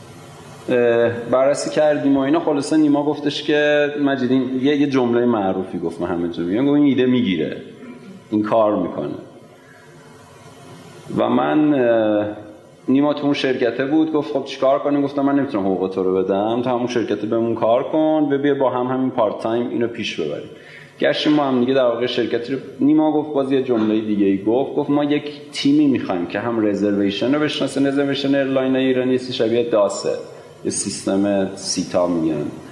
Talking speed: 165 wpm